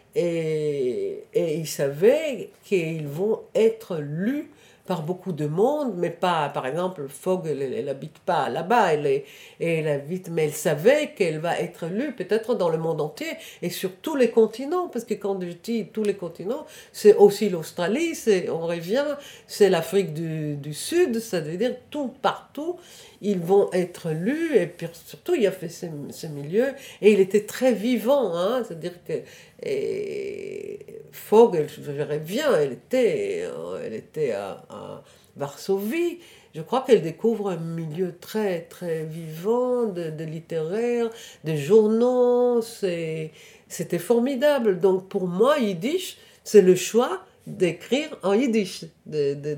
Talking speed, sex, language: 155 wpm, female, French